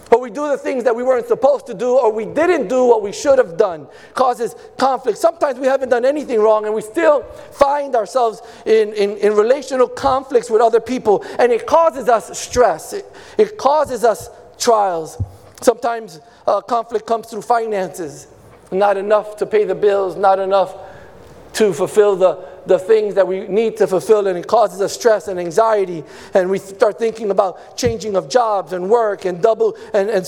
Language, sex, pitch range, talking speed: English, male, 190-245 Hz, 190 wpm